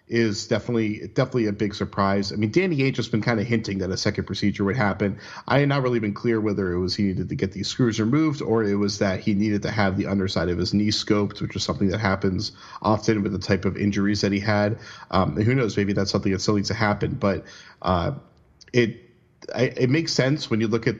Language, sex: English, male